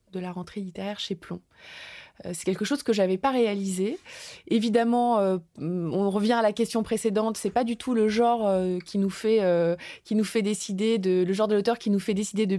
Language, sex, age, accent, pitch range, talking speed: French, female, 20-39, French, 175-220 Hz, 235 wpm